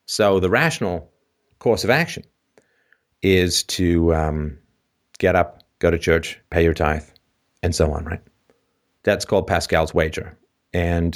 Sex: male